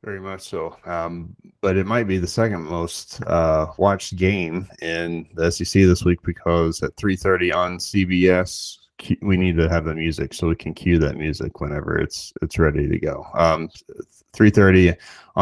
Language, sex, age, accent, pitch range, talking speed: English, male, 30-49, American, 80-90 Hz, 170 wpm